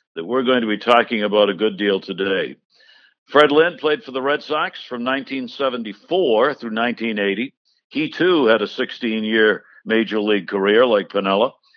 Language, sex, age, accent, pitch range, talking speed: English, male, 60-79, American, 110-145 Hz, 160 wpm